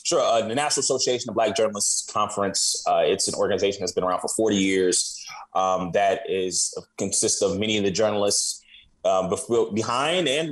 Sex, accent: male, American